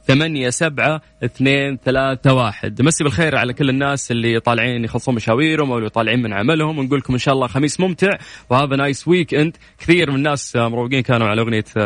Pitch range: 115-140 Hz